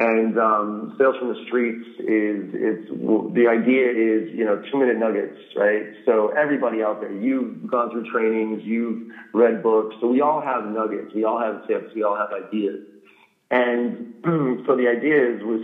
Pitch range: 110-150 Hz